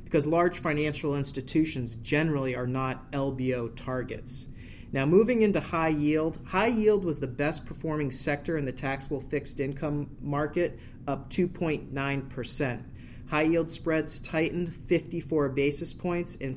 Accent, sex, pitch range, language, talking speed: American, male, 130-160 Hz, English, 135 wpm